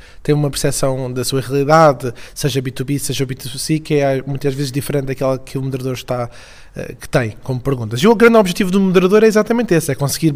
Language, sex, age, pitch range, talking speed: Portuguese, male, 20-39, 140-175 Hz, 190 wpm